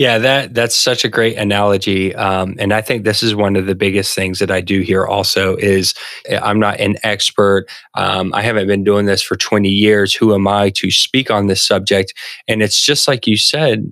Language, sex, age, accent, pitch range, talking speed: English, male, 20-39, American, 100-115 Hz, 220 wpm